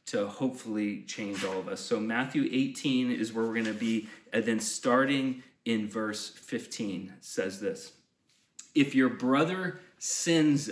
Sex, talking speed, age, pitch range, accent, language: male, 150 wpm, 30-49, 120-180 Hz, American, English